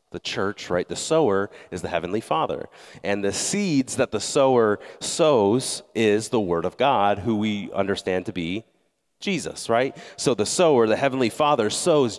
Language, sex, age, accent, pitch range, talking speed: English, male, 30-49, American, 110-150 Hz, 170 wpm